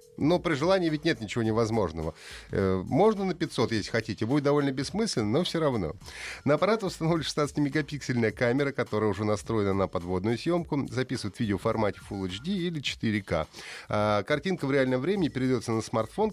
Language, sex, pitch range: Russian, male, 110-160 Hz